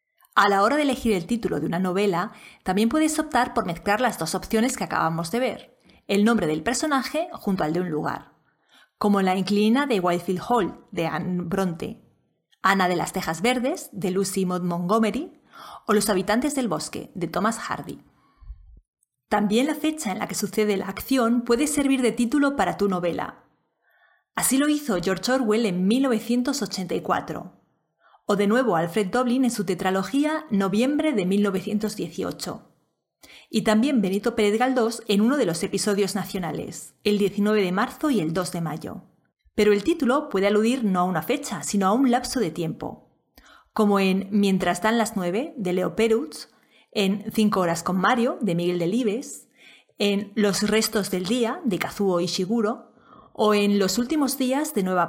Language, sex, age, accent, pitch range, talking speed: Spanish, female, 30-49, Spanish, 190-240 Hz, 175 wpm